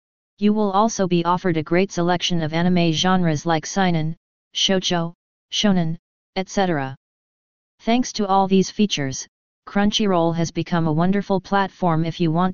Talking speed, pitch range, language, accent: 145 wpm, 165-190 Hz, English, American